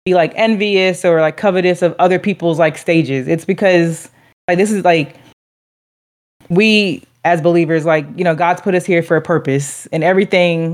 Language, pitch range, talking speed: English, 150-185 Hz, 180 wpm